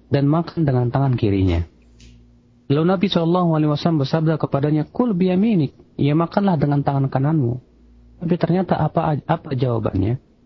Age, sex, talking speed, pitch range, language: 40-59, male, 150 wpm, 105-145 Hz, Malay